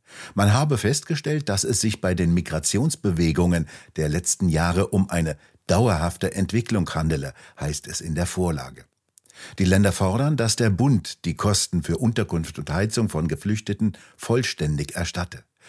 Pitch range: 85-105 Hz